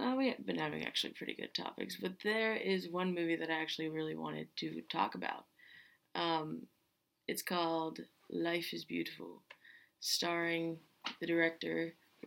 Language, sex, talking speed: English, female, 145 wpm